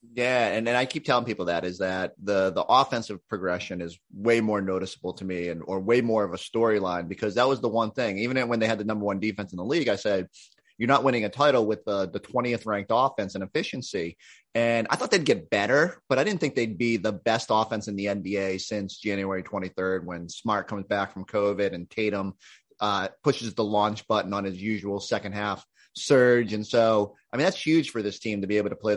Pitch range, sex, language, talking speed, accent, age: 100-125 Hz, male, English, 235 wpm, American, 30-49